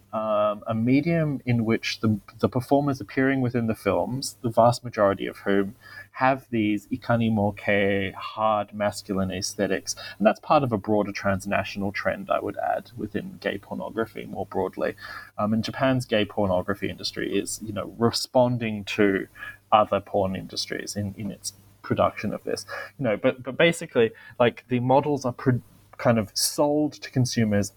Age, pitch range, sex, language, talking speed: 20-39, 100-130 Hz, male, English, 160 wpm